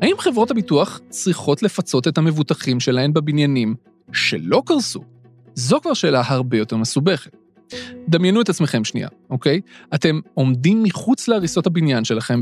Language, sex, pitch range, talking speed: Hebrew, male, 135-200 Hz, 135 wpm